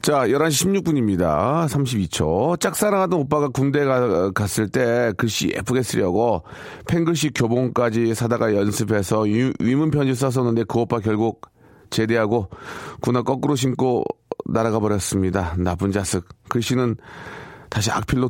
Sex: male